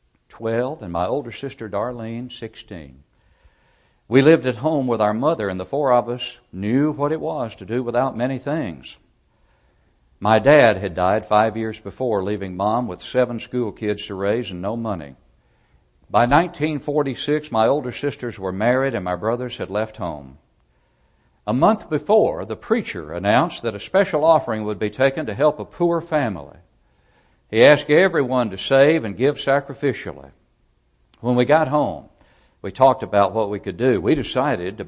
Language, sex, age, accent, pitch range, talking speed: English, male, 60-79, American, 95-135 Hz, 170 wpm